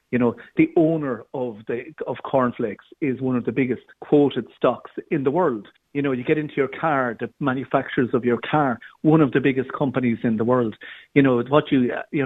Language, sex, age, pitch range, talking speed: English, male, 50-69, 120-160 Hz, 210 wpm